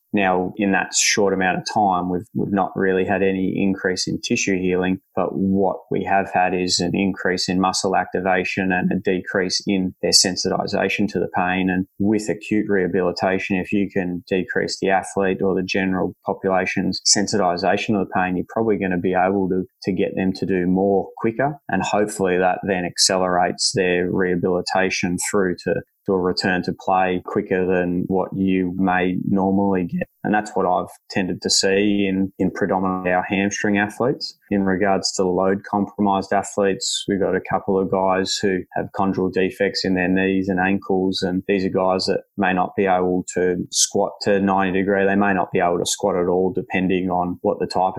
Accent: Australian